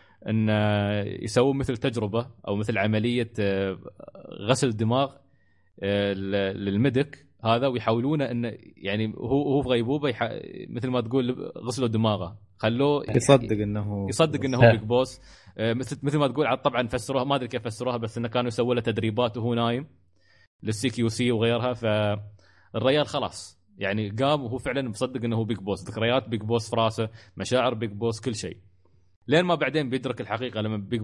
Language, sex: Arabic, male